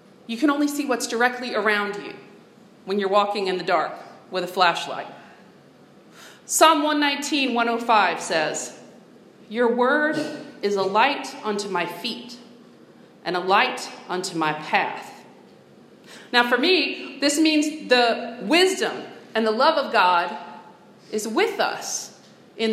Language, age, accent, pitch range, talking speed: English, 40-59, American, 215-285 Hz, 135 wpm